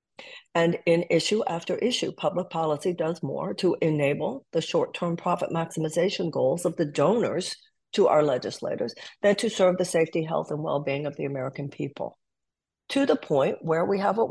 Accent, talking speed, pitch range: American, 170 wpm, 150-200 Hz